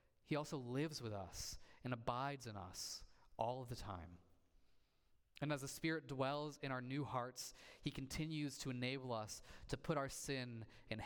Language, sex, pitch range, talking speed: English, male, 110-145 Hz, 175 wpm